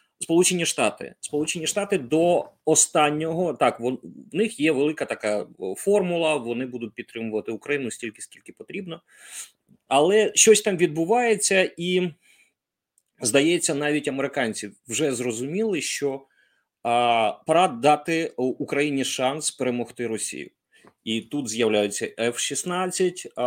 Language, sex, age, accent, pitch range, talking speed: Ukrainian, male, 30-49, native, 120-160 Hz, 110 wpm